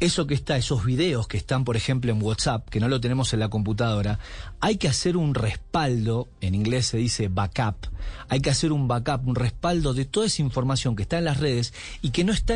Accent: Argentinian